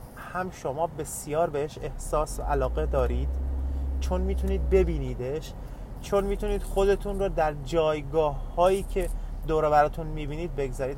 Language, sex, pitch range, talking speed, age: Persian, male, 110-165 Hz, 120 wpm, 30-49